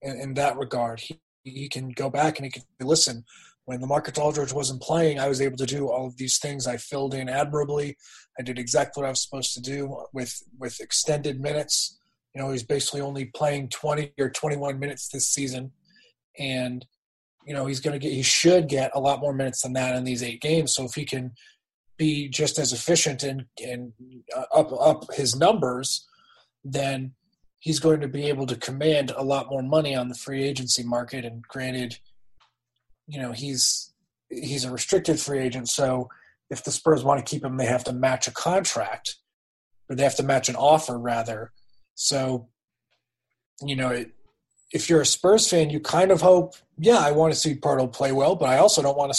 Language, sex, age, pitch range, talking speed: English, male, 30-49, 130-150 Hz, 205 wpm